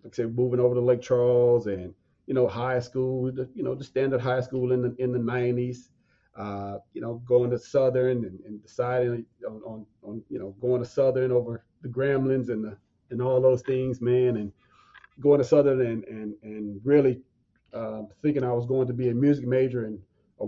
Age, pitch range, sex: 40-59, 110-130 Hz, male